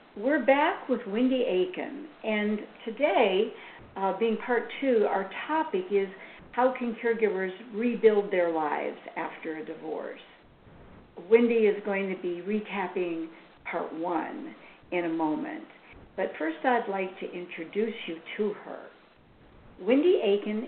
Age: 60-79